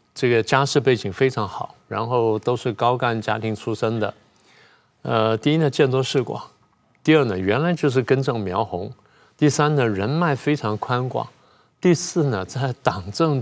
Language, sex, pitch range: Chinese, male, 110-140 Hz